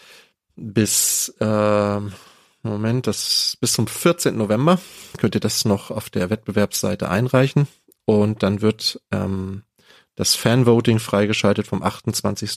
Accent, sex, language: German, male, German